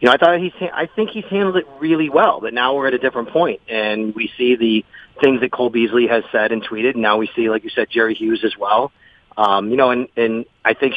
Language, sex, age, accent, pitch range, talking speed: English, male, 30-49, American, 120-150 Hz, 270 wpm